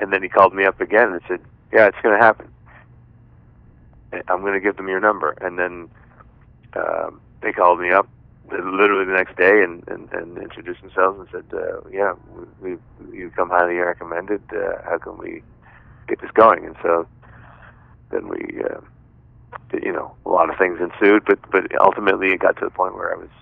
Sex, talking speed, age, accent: male, 195 wpm, 30-49, American